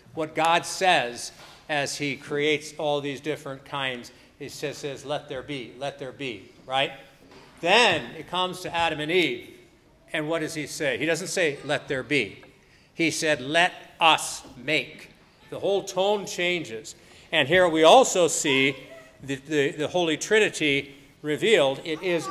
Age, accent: 50-69, American